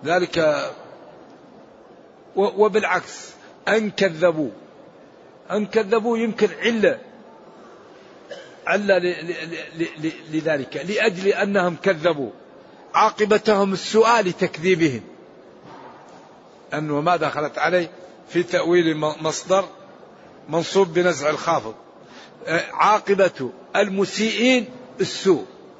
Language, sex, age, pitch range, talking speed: Arabic, male, 60-79, 170-210 Hz, 65 wpm